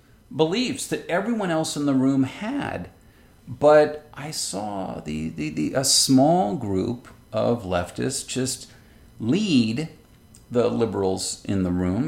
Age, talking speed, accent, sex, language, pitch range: 50-69, 130 wpm, American, male, English, 95-135 Hz